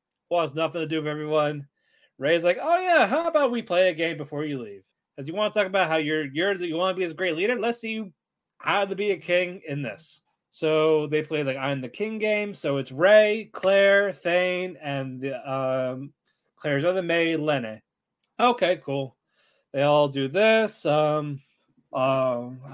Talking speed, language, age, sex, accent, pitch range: 185 wpm, English, 20-39, male, American, 145-205 Hz